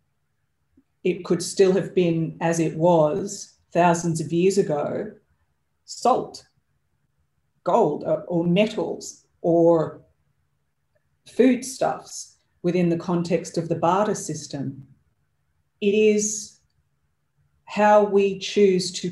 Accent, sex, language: Australian, female, English